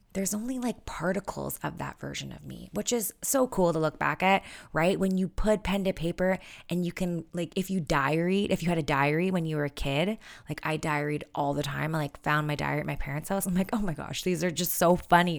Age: 20-39